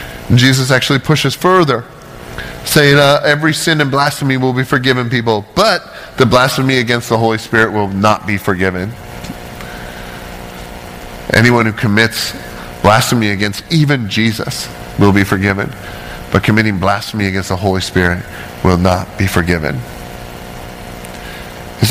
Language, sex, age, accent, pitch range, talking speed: English, male, 30-49, American, 90-125 Hz, 130 wpm